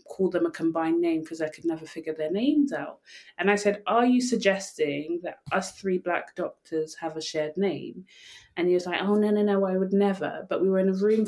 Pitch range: 175-205 Hz